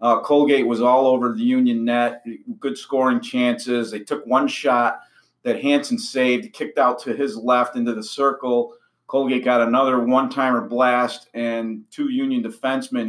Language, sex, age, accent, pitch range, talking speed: English, male, 40-59, American, 115-135 Hz, 160 wpm